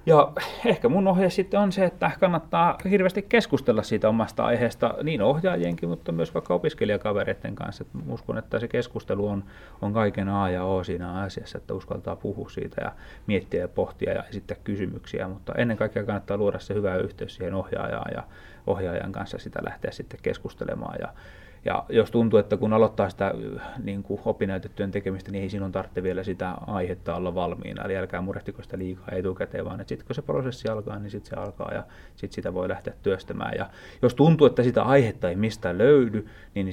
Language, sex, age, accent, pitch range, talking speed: Finnish, male, 30-49, native, 95-110 Hz, 185 wpm